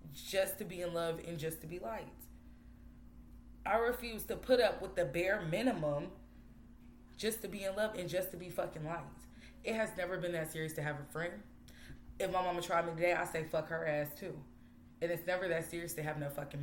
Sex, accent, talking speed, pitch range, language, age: female, American, 220 wpm, 145-190 Hz, English, 20-39